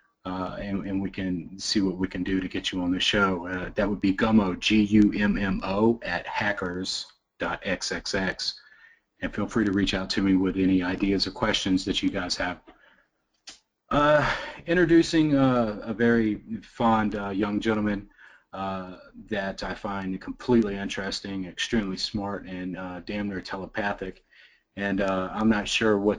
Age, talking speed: 30-49, 160 wpm